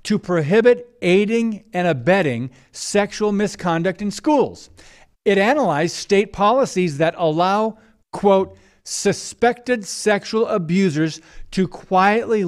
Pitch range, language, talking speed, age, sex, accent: 155-205 Hz, English, 100 wpm, 50-69, male, American